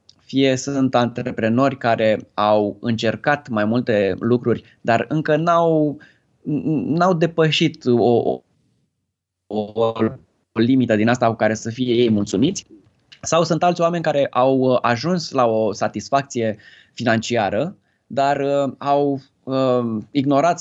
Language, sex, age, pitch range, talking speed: Romanian, male, 20-39, 110-135 Hz, 120 wpm